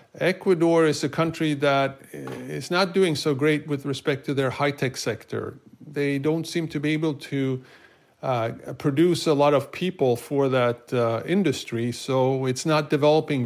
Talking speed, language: 165 wpm, English